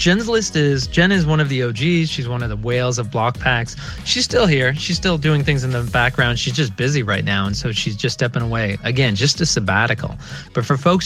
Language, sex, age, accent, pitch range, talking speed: English, male, 30-49, American, 120-155 Hz, 245 wpm